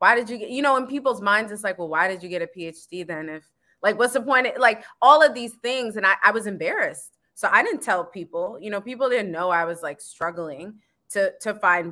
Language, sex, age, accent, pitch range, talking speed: English, female, 20-39, American, 175-220 Hz, 255 wpm